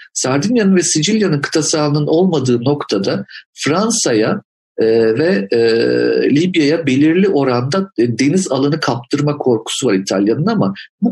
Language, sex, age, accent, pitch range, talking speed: Turkish, male, 50-69, native, 120-185 Hz, 105 wpm